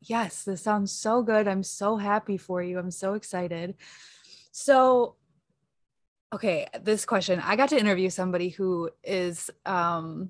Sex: female